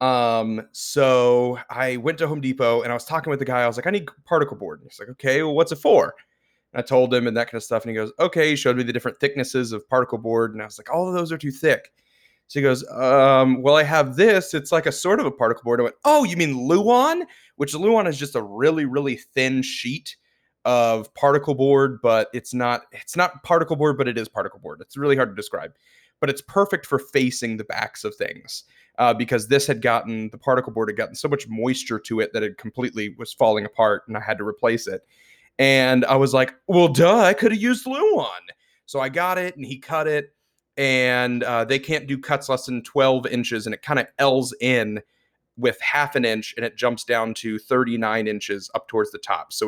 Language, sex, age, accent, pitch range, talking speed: English, male, 20-39, American, 120-155 Hz, 240 wpm